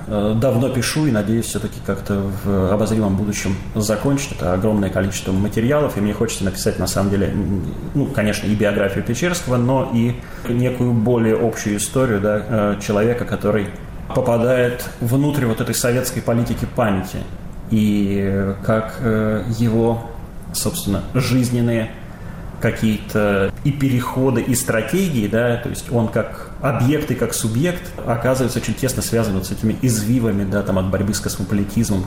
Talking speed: 140 wpm